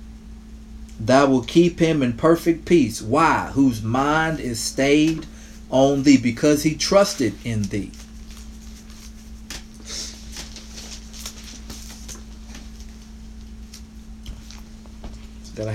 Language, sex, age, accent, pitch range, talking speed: English, male, 40-59, American, 100-135 Hz, 80 wpm